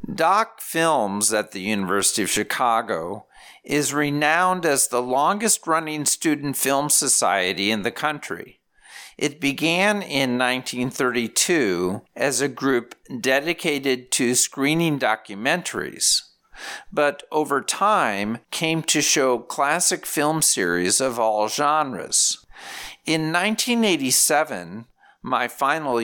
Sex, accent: male, American